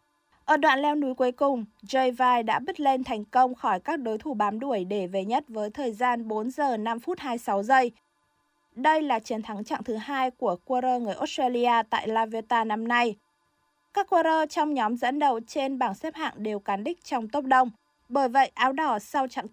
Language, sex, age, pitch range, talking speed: Vietnamese, female, 20-39, 220-275 Hz, 210 wpm